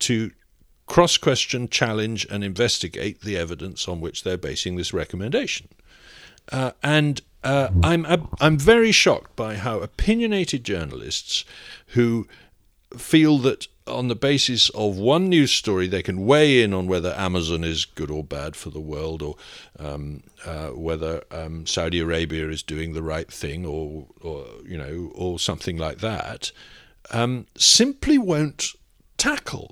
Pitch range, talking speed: 80-120 Hz, 145 wpm